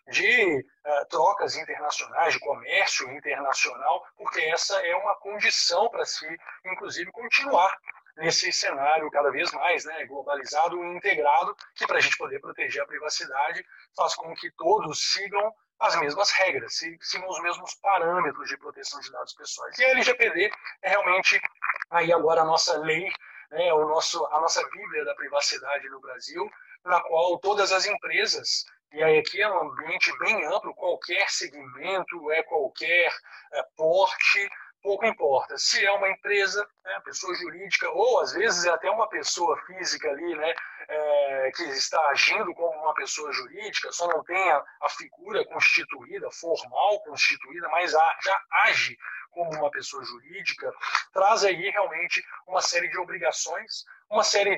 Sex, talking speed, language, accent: male, 155 wpm, Portuguese, Brazilian